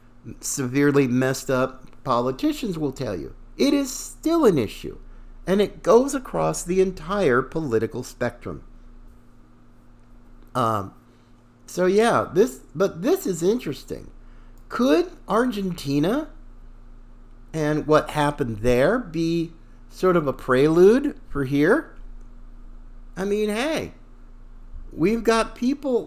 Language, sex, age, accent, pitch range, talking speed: English, male, 50-69, American, 120-190 Hz, 110 wpm